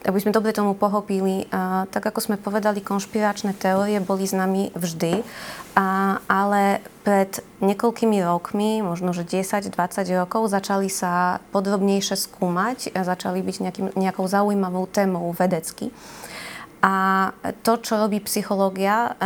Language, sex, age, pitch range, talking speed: Slovak, female, 20-39, 185-210 Hz, 125 wpm